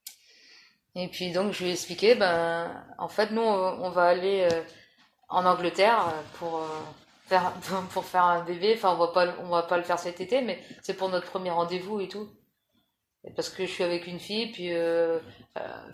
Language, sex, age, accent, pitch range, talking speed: French, female, 20-39, French, 170-200 Hz, 205 wpm